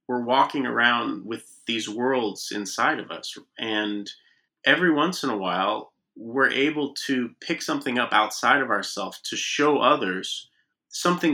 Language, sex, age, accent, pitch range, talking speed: English, male, 30-49, American, 115-150 Hz, 150 wpm